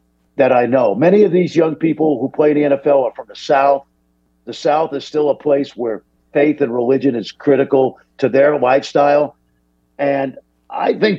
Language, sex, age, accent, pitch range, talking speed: English, male, 50-69, American, 120-170 Hz, 190 wpm